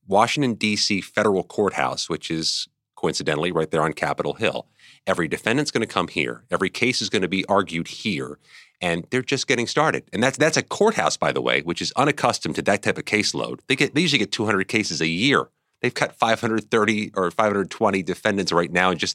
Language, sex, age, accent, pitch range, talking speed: English, male, 40-59, American, 85-120 Hz, 205 wpm